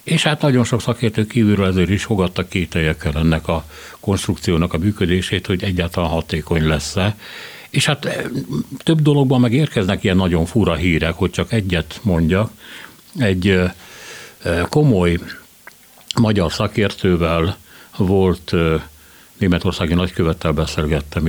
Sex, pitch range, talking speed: male, 85-110 Hz, 115 wpm